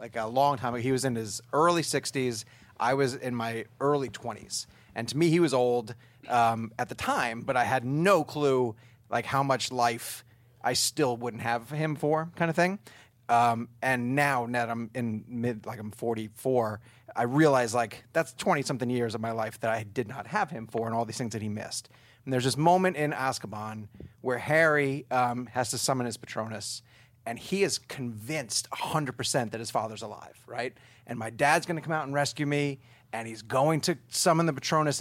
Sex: male